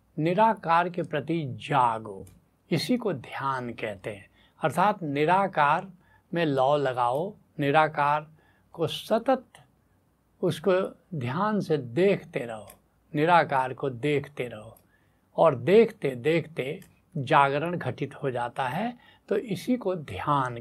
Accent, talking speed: native, 110 wpm